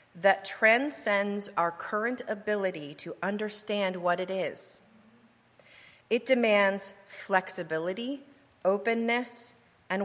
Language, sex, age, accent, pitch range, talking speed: English, female, 40-59, American, 180-230 Hz, 90 wpm